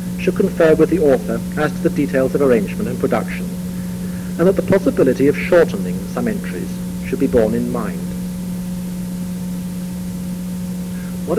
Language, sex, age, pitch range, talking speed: English, male, 60-79, 165-180 Hz, 140 wpm